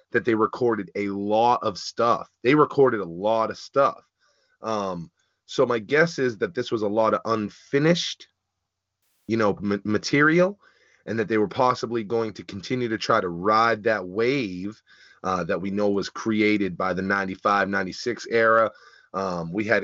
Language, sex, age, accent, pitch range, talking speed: English, male, 30-49, American, 100-125 Hz, 170 wpm